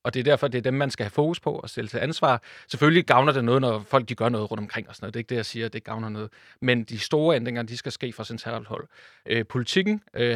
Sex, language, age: male, Danish, 30-49